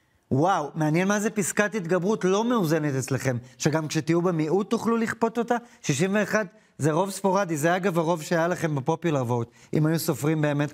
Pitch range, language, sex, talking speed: 145-180 Hz, English, male, 160 wpm